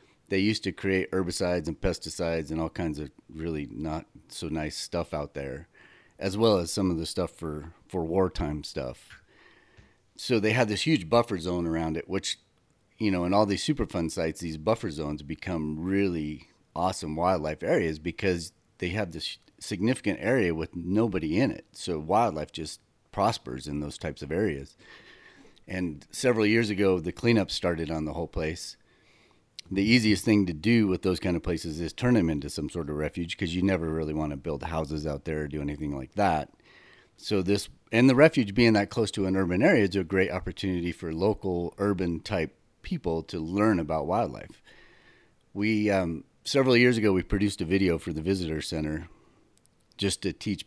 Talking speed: 185 wpm